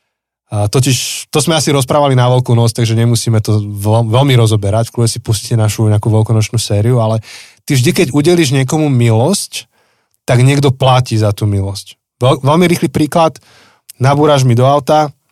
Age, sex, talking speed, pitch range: 20-39, male, 155 wpm, 110-135 Hz